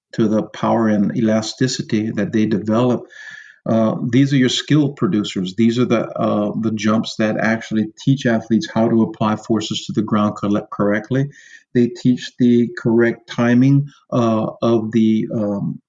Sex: male